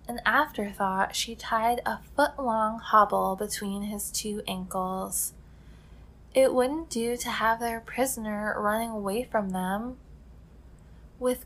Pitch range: 200-250 Hz